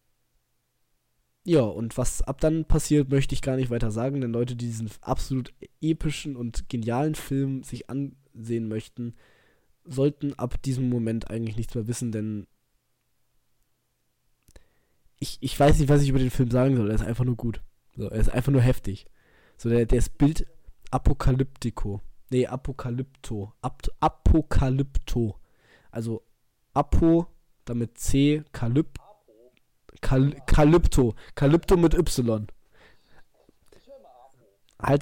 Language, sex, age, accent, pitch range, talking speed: German, male, 20-39, German, 120-145 Hz, 125 wpm